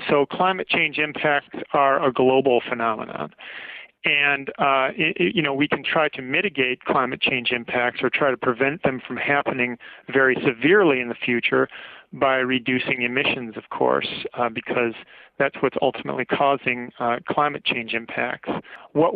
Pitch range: 120-140 Hz